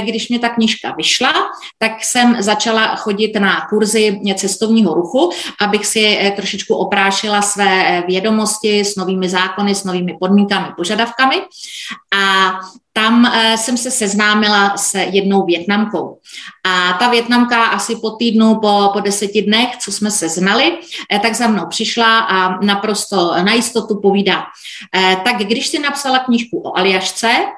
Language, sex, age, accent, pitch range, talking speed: Czech, female, 30-49, native, 195-225 Hz, 135 wpm